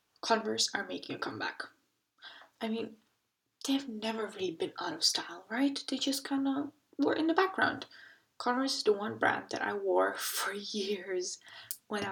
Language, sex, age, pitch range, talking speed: English, female, 10-29, 215-280 Hz, 165 wpm